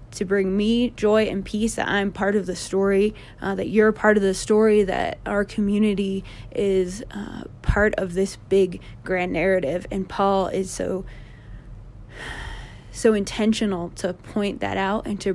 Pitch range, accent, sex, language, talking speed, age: 125-210 Hz, American, female, English, 165 wpm, 20-39